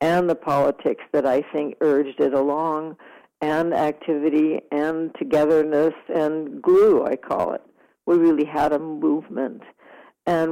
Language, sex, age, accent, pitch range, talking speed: English, female, 60-79, American, 145-175 Hz, 135 wpm